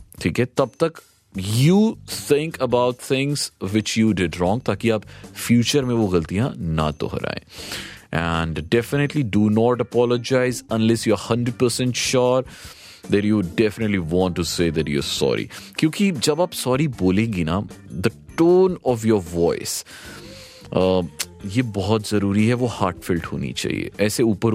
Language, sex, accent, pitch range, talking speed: Hindi, male, native, 100-135 Hz, 150 wpm